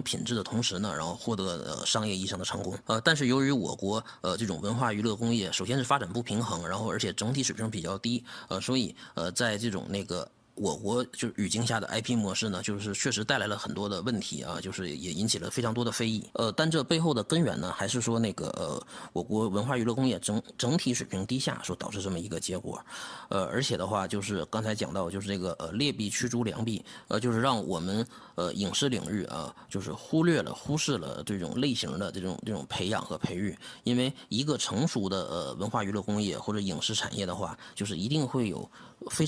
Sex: male